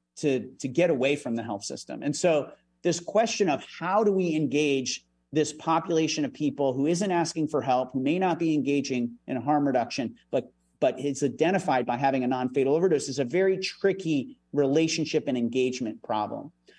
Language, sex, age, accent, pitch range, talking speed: English, male, 40-59, American, 125-170 Hz, 180 wpm